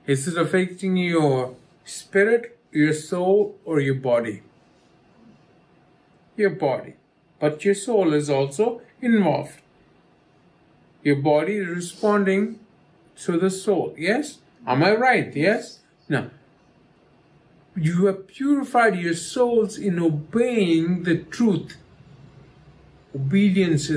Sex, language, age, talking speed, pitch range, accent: male, English, 50-69, 105 wpm, 160-210 Hz, Indian